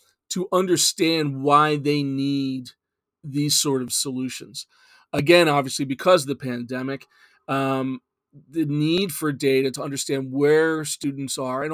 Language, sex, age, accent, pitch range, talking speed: English, male, 40-59, American, 135-175 Hz, 135 wpm